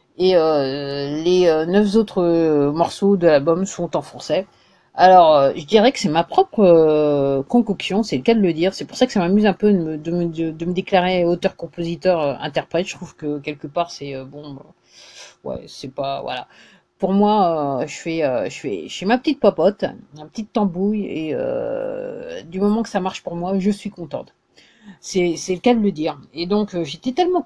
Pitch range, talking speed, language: 170-220 Hz, 200 wpm, English